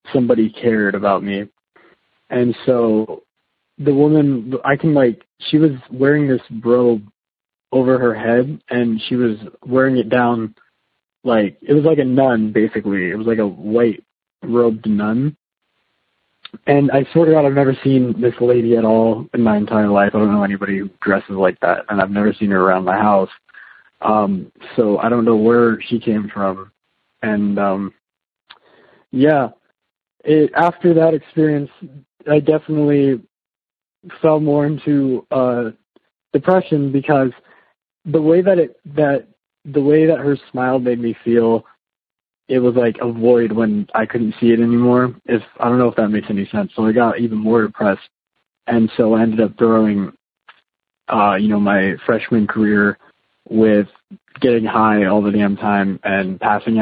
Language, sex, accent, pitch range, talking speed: English, male, American, 105-135 Hz, 165 wpm